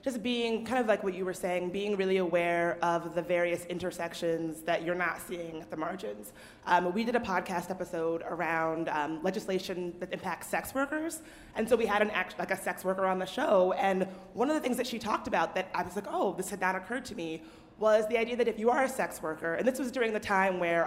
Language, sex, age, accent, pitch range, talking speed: English, female, 30-49, American, 170-215 Hz, 245 wpm